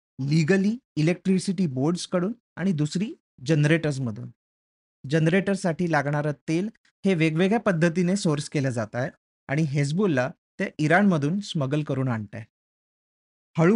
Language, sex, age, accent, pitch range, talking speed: Marathi, male, 30-49, native, 140-195 Hz, 80 wpm